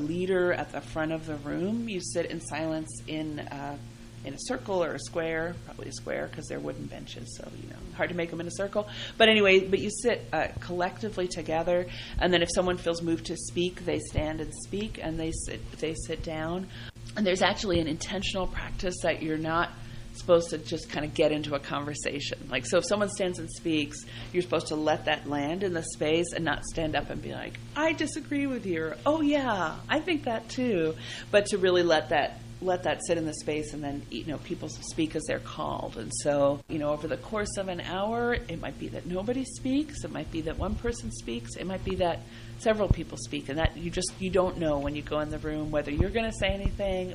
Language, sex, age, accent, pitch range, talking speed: English, female, 30-49, American, 145-180 Hz, 235 wpm